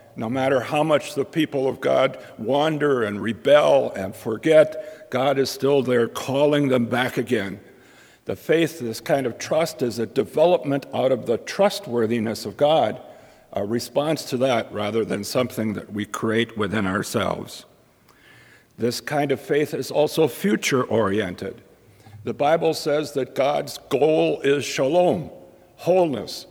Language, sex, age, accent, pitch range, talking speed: English, male, 60-79, American, 120-150 Hz, 145 wpm